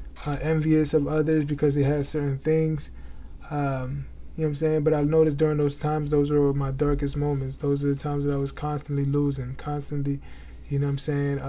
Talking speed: 215 wpm